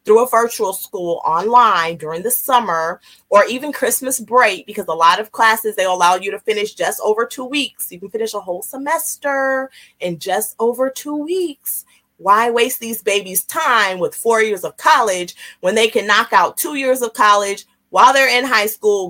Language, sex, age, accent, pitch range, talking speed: English, female, 30-49, American, 210-280 Hz, 190 wpm